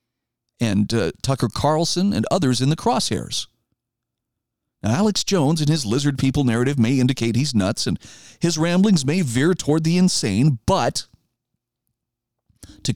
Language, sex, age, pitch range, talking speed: English, male, 50-69, 120-160 Hz, 145 wpm